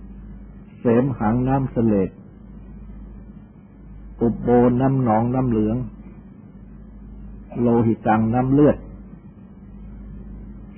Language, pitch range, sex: Thai, 105-125 Hz, male